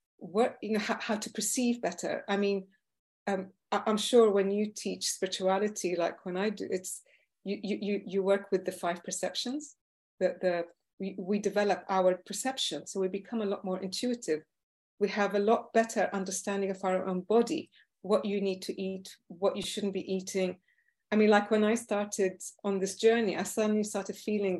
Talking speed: 195 wpm